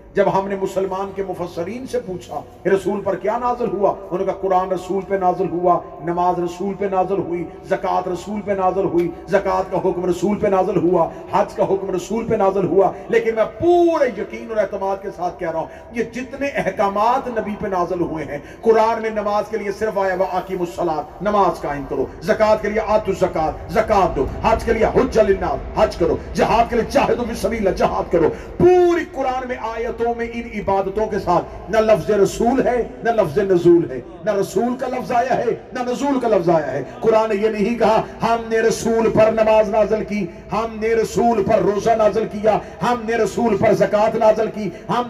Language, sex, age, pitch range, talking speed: Urdu, male, 50-69, 190-235 Hz, 200 wpm